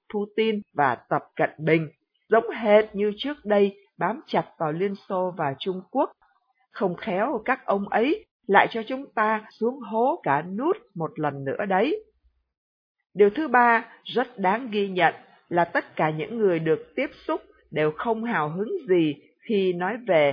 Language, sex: Vietnamese, female